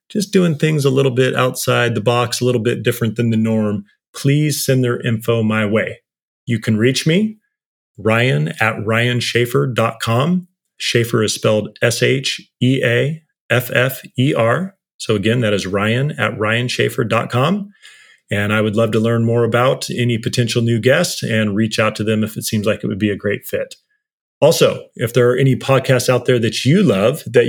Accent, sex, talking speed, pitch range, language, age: American, male, 170 wpm, 110-130 Hz, English, 30-49